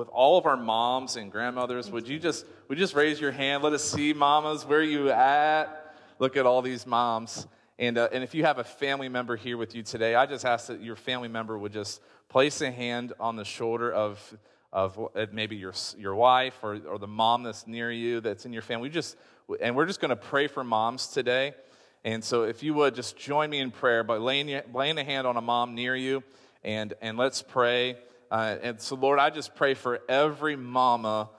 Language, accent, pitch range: English, American, 115-140 Hz